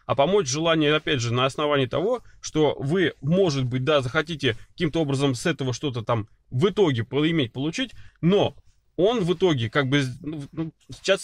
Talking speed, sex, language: 170 wpm, male, Russian